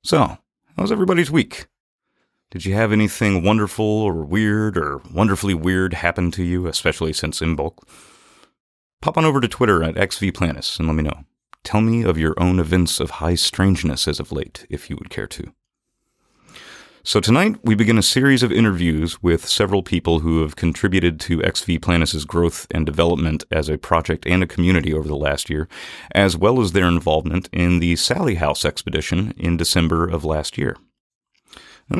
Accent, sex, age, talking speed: American, male, 30-49, 180 wpm